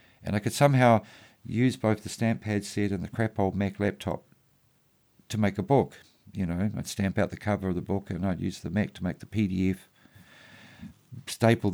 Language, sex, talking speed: English, male, 205 wpm